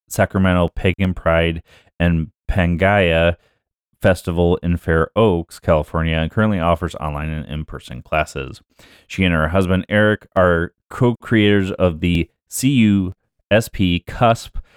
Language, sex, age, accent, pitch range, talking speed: English, male, 30-49, American, 85-100 Hz, 115 wpm